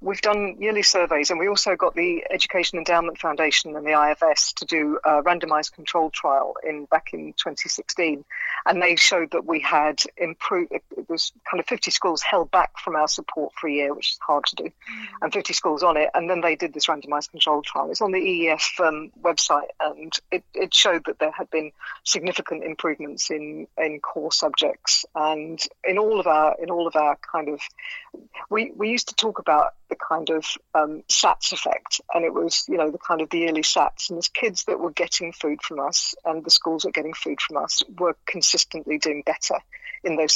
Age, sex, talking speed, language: 50-69, female, 210 wpm, English